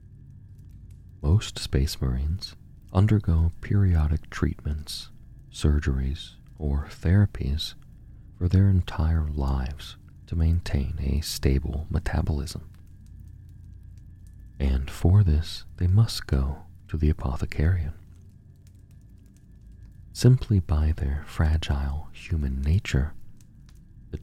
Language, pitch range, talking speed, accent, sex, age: English, 75-95 Hz, 85 wpm, American, male, 40-59